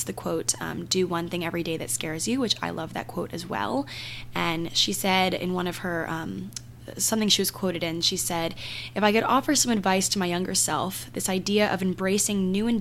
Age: 10-29